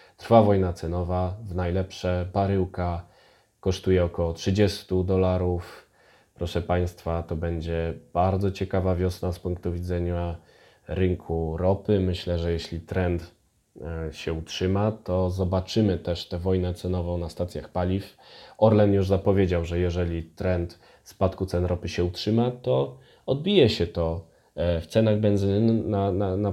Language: Polish